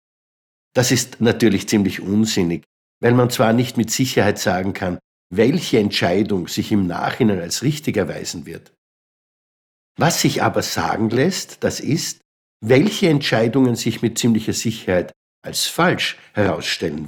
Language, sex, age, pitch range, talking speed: German, male, 60-79, 110-140 Hz, 135 wpm